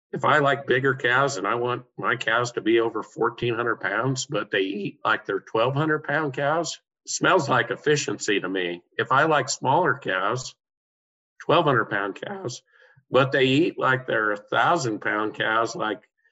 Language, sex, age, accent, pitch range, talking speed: English, male, 50-69, American, 110-140 Hz, 170 wpm